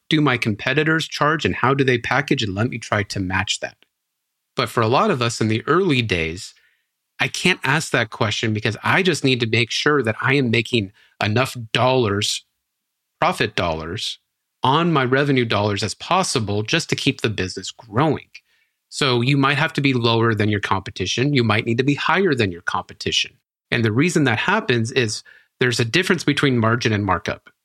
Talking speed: 195 wpm